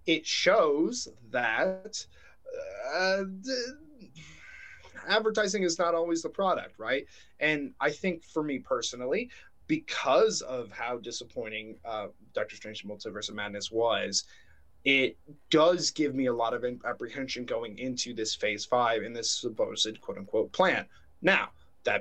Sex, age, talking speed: male, 20-39, 135 wpm